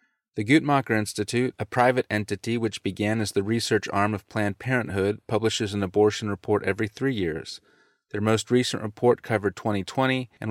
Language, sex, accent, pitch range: English, male, American, 95-115 Hz